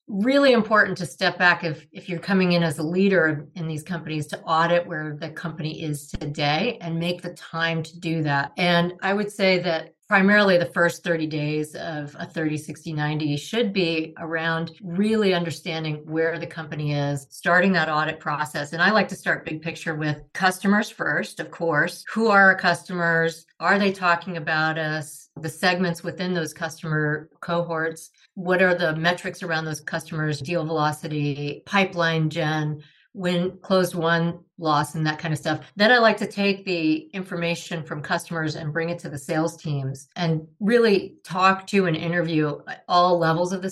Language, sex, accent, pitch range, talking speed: English, female, American, 155-185 Hz, 180 wpm